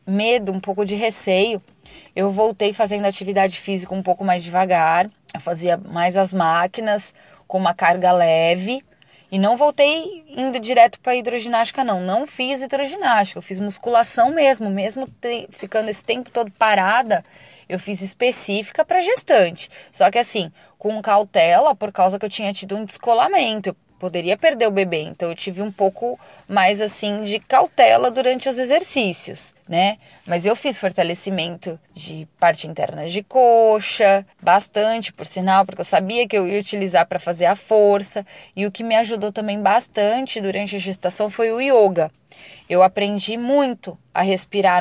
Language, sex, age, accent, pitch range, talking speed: Portuguese, female, 10-29, Brazilian, 185-225 Hz, 160 wpm